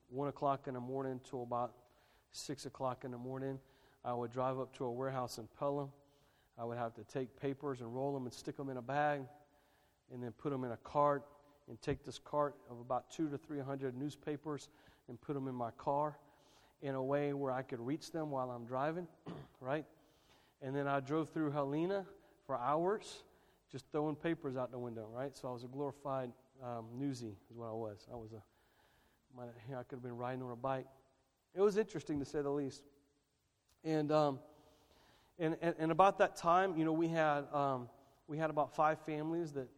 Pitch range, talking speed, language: 130-145 Hz, 205 wpm, English